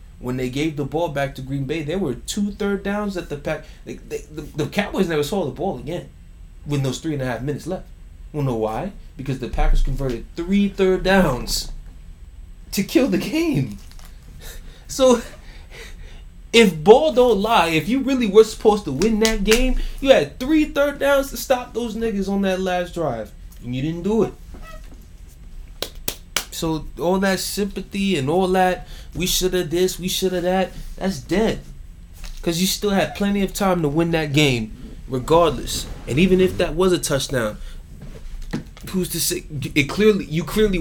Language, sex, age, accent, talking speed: English, male, 20-39, American, 180 wpm